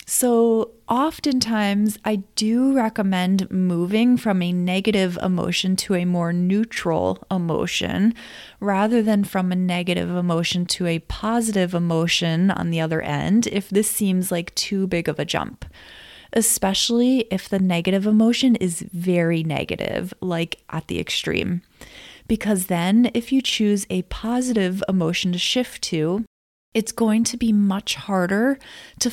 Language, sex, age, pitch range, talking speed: English, female, 30-49, 180-220 Hz, 140 wpm